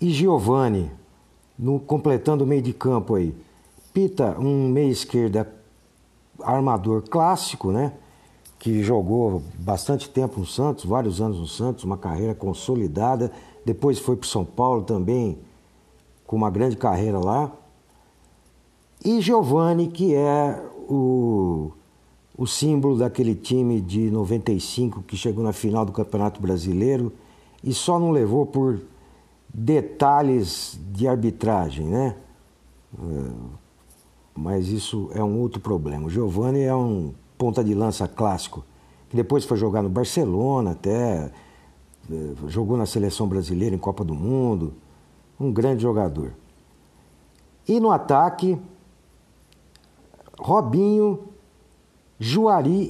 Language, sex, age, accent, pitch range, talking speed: Portuguese, male, 60-79, Brazilian, 85-135 Hz, 120 wpm